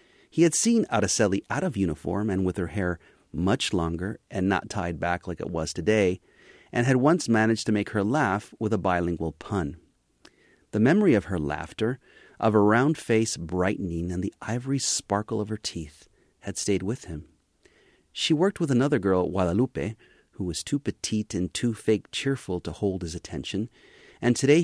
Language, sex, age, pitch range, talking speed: English, male, 40-59, 90-120 Hz, 180 wpm